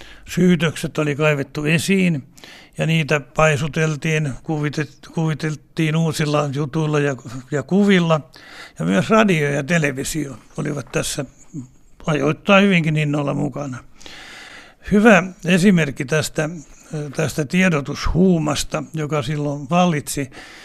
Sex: male